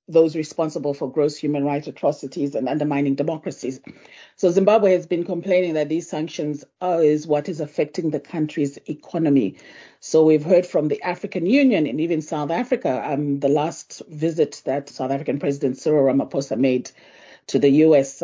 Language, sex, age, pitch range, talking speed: English, female, 40-59, 140-170 Hz, 165 wpm